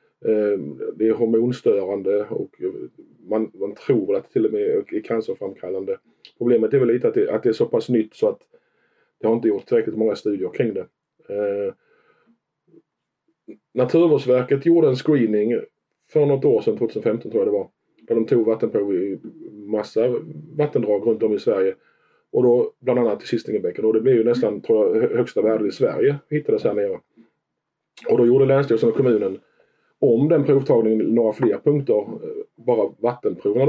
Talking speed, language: 170 wpm, Swedish